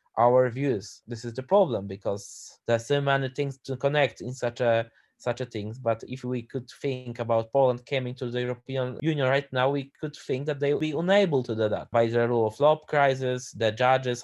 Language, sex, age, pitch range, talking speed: Polish, male, 20-39, 120-145 Hz, 215 wpm